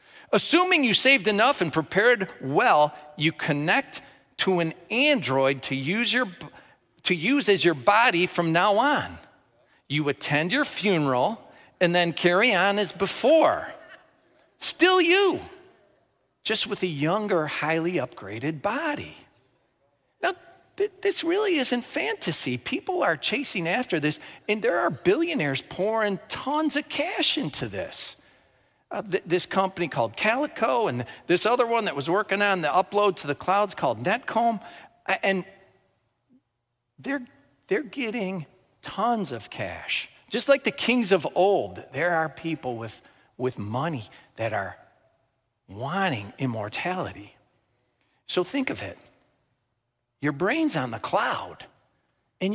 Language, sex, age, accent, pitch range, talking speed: English, male, 50-69, American, 155-240 Hz, 135 wpm